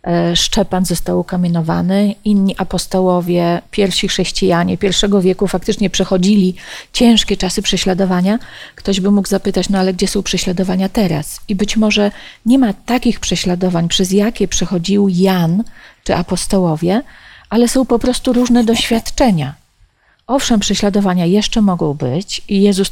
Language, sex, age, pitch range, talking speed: Polish, female, 40-59, 185-225 Hz, 130 wpm